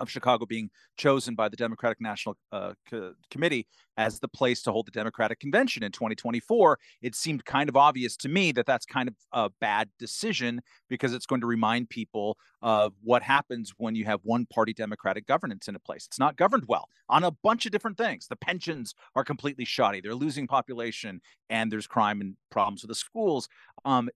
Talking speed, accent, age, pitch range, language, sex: 200 wpm, American, 40-59, 120-170 Hz, English, male